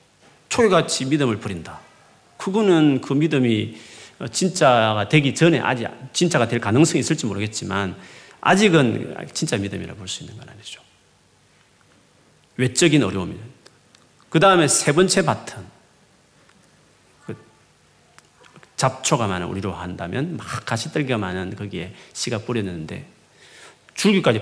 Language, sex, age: Korean, male, 40-59